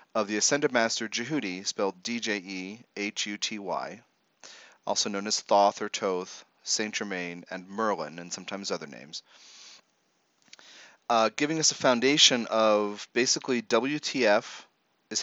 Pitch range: 100-125 Hz